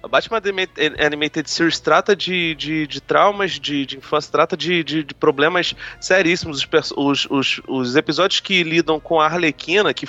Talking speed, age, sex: 165 wpm, 30-49, male